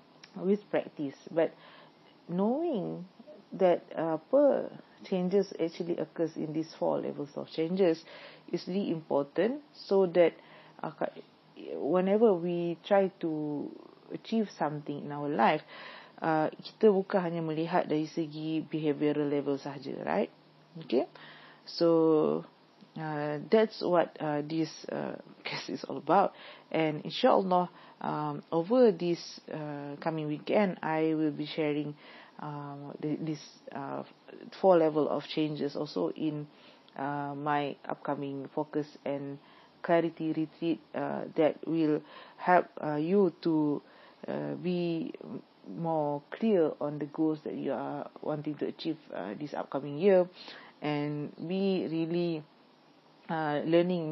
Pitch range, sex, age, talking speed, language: 150-180 Hz, female, 40-59, 120 wpm, English